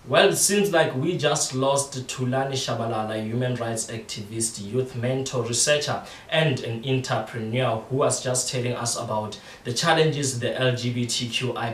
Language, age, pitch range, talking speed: English, 20-39, 115-130 Hz, 145 wpm